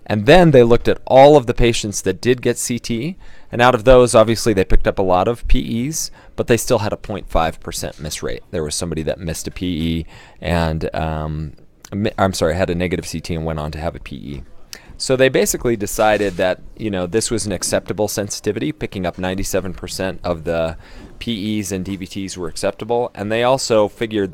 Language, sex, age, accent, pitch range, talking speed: English, male, 30-49, American, 90-115 Hz, 205 wpm